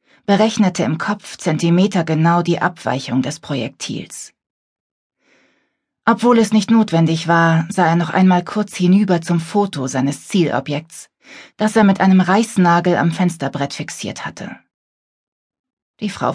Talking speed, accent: 130 wpm, German